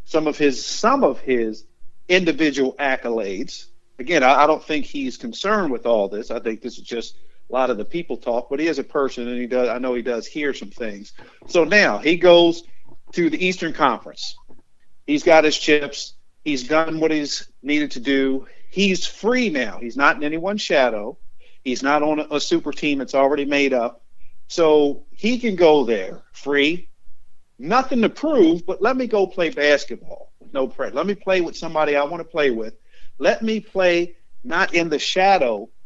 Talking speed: 190 wpm